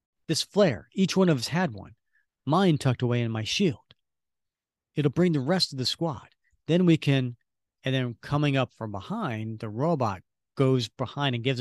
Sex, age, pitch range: male, 40-59, 110-145 Hz